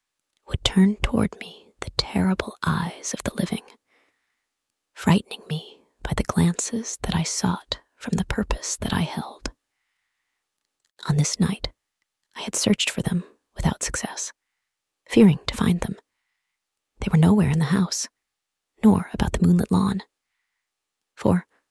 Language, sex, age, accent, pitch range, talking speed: English, female, 30-49, American, 165-205 Hz, 140 wpm